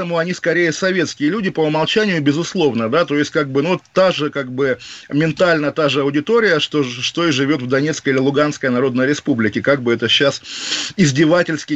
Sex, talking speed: male, 185 wpm